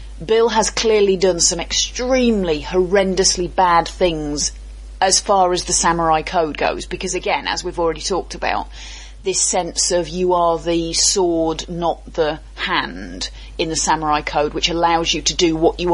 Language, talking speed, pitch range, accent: English, 165 wpm, 160-190 Hz, British